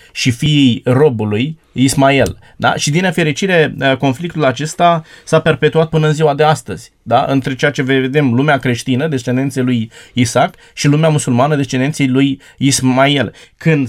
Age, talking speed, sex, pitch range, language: 20-39, 145 wpm, male, 135-165 Hz, Romanian